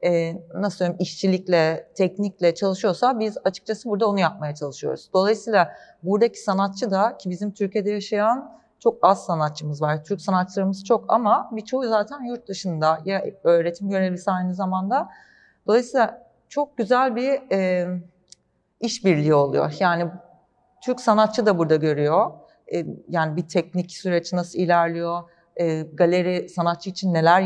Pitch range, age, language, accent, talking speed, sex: 170-215 Hz, 40-59, Turkish, native, 135 wpm, female